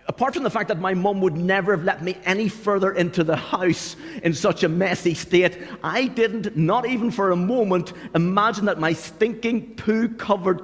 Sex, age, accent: male, 50-69, British